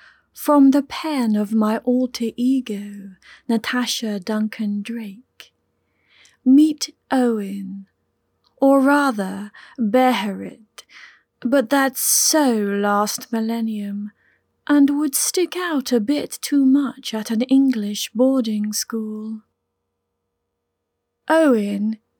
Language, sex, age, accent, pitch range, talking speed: English, female, 30-49, British, 210-275 Hz, 90 wpm